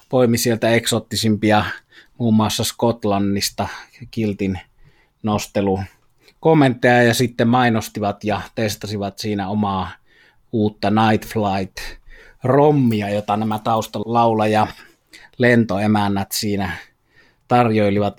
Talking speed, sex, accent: 80 wpm, male, native